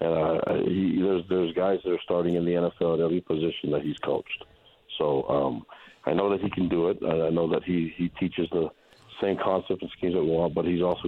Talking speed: 245 wpm